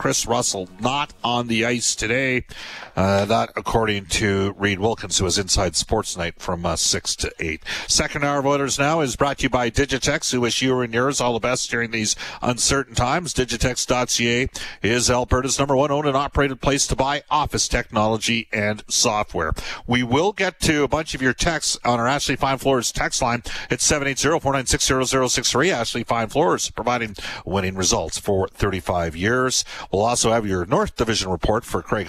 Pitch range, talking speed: 100-135 Hz, 200 wpm